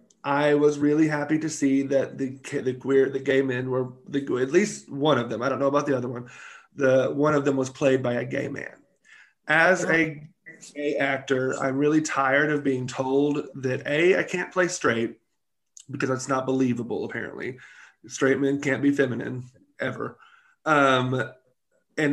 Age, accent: 30-49, American